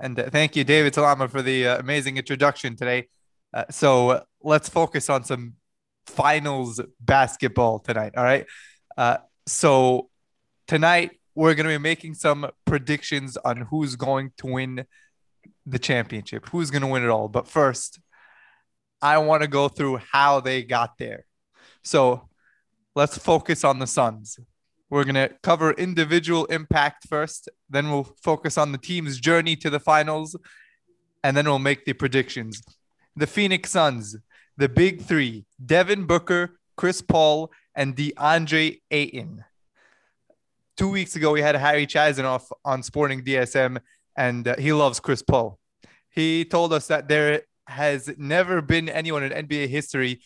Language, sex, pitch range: English, male, 130-160 Hz